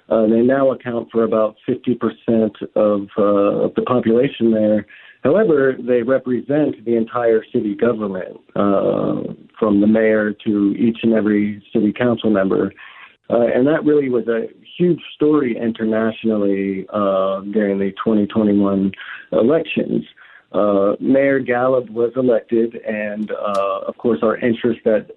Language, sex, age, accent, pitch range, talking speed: English, male, 50-69, American, 105-125 Hz, 135 wpm